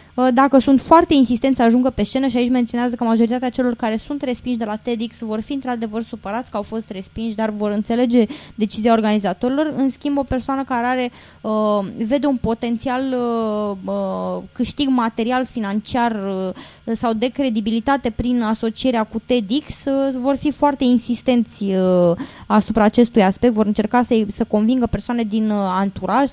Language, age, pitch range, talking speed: Romanian, 20-39, 210-255 Hz, 165 wpm